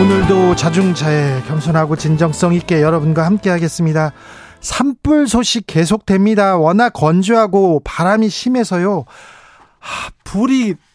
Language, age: Korean, 40-59